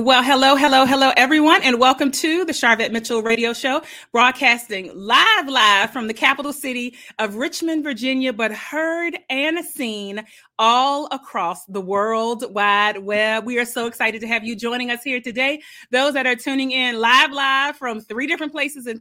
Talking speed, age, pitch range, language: 175 wpm, 30-49, 220-275 Hz, English